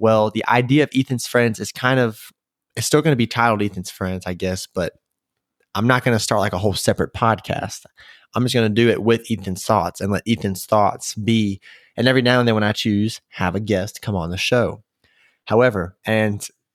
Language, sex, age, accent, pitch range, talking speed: English, male, 20-39, American, 100-125 Hz, 220 wpm